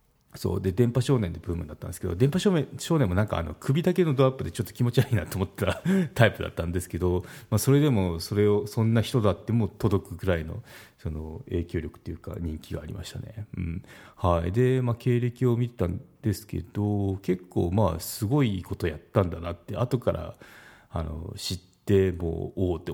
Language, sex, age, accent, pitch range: Japanese, male, 40-59, native, 90-120 Hz